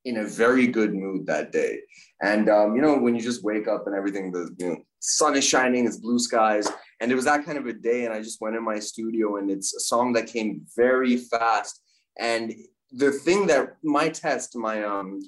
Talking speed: 220 wpm